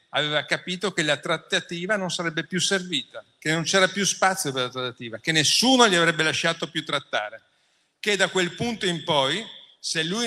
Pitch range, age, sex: 155-190 Hz, 50-69, male